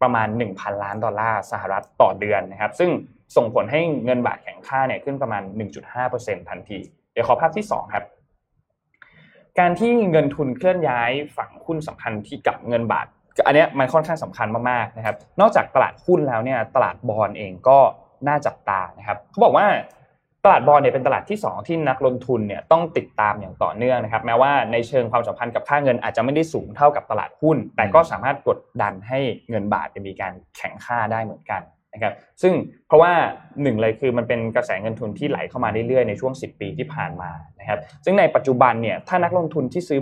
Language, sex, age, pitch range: Thai, male, 20-39, 110-150 Hz